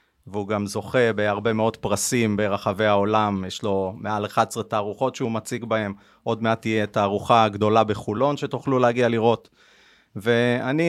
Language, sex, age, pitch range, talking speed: Hebrew, male, 30-49, 110-135 Hz, 145 wpm